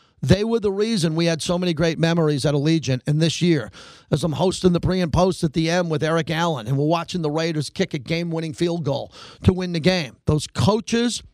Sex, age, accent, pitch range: male, 40-59, American, 150-185 Hz